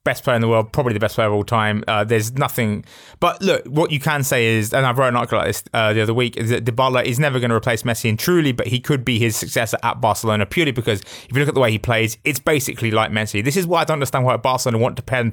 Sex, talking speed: male, 305 wpm